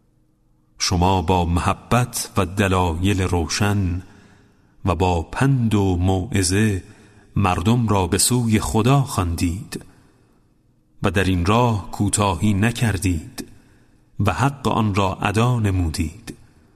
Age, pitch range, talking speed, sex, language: 40-59, 95-110 Hz, 105 wpm, male, Persian